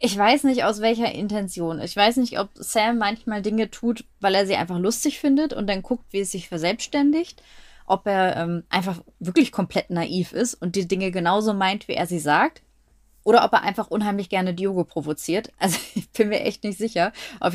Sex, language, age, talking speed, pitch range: female, German, 20-39, 205 wpm, 195-245 Hz